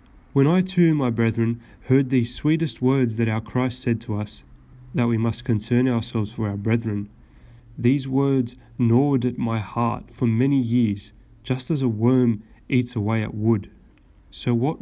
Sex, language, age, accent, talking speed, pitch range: male, English, 30-49, Australian, 170 wpm, 115-130 Hz